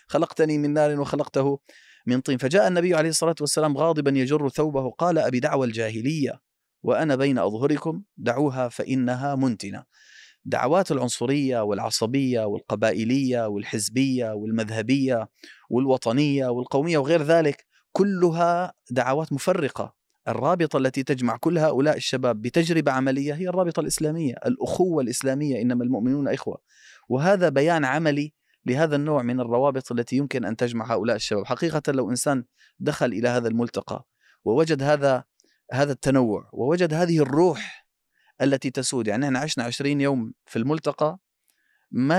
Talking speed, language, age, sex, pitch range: 130 wpm, Arabic, 30-49, male, 125-150 Hz